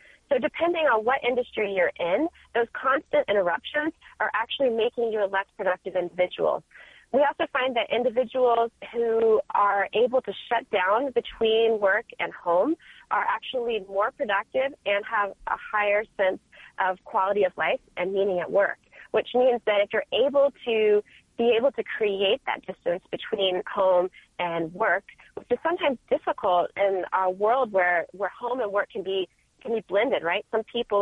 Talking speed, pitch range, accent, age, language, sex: 170 wpm, 195-245 Hz, American, 30-49, English, female